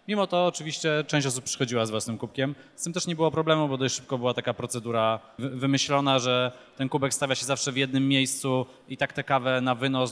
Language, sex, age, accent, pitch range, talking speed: Polish, male, 20-39, native, 115-130 Hz, 220 wpm